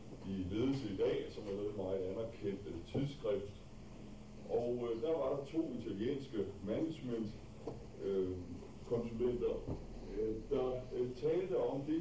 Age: 60-79